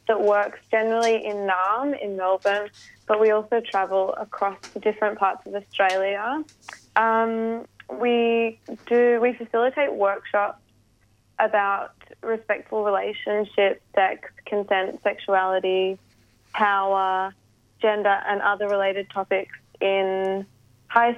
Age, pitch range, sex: 20-39, 190-220 Hz, female